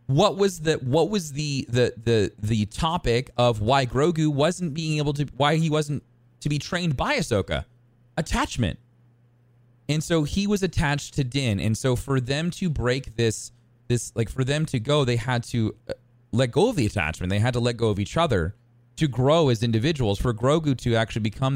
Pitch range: 100-125 Hz